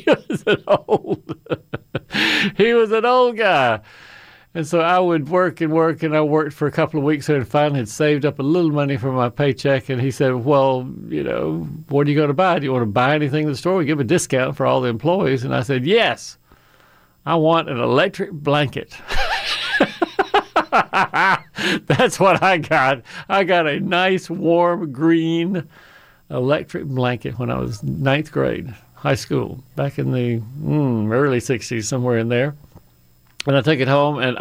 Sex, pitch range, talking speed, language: male, 130-170 Hz, 180 wpm, English